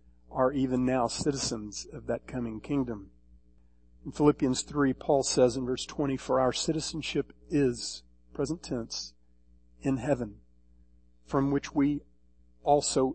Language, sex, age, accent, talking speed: English, male, 50-69, American, 130 wpm